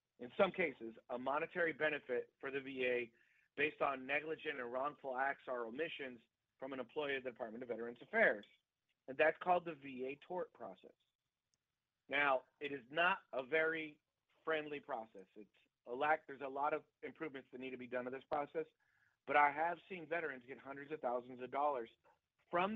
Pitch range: 125-155 Hz